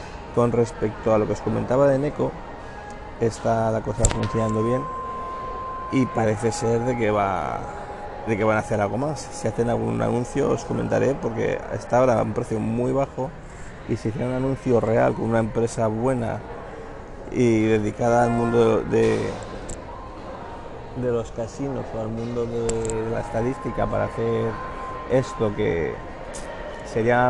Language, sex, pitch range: Spanish, male, 110-120 Hz